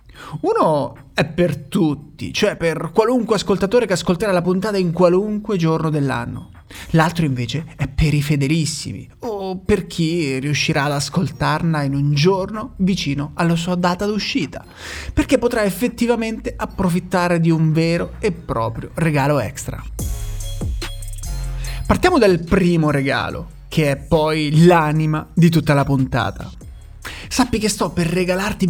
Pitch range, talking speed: 140-195 Hz, 135 wpm